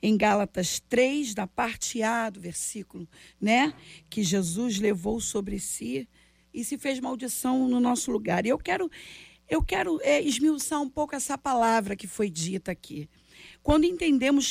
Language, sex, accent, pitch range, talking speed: Portuguese, female, Brazilian, 215-280 Hz, 150 wpm